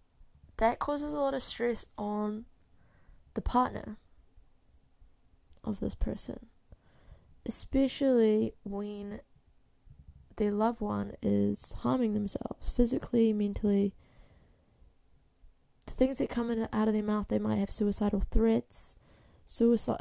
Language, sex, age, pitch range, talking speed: English, female, 20-39, 185-235 Hz, 110 wpm